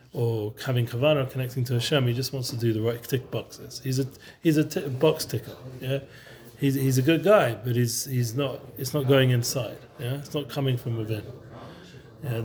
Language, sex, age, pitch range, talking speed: English, male, 40-59, 120-140 Hz, 210 wpm